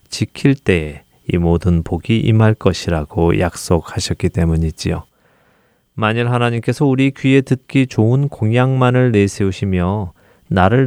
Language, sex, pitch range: Korean, male, 90-120 Hz